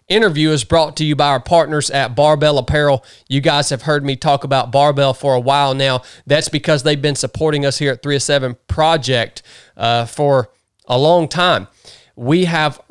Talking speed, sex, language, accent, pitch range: 185 wpm, male, English, American, 130-150 Hz